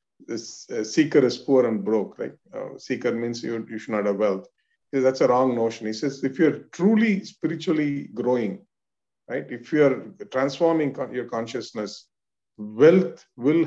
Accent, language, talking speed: Indian, English, 180 wpm